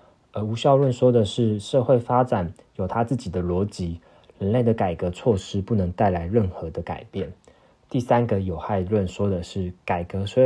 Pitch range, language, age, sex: 95-115 Hz, Chinese, 20-39, male